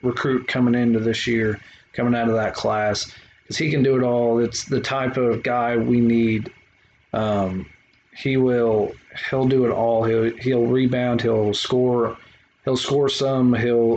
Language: English